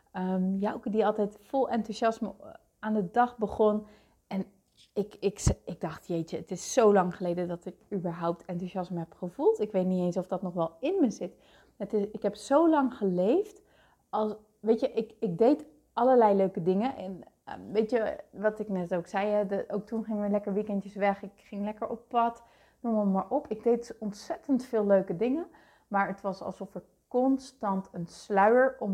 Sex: female